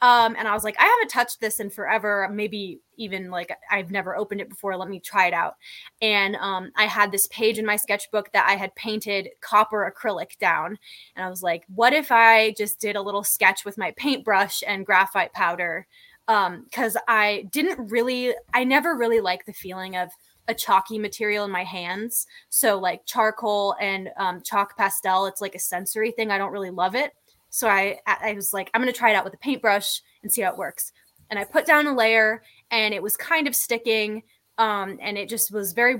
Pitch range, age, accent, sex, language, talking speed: 195-235 Hz, 20-39, American, female, English, 215 wpm